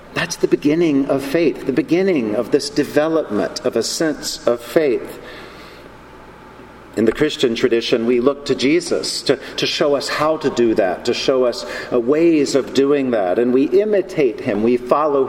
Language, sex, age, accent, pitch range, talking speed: English, male, 50-69, American, 130-175 Hz, 175 wpm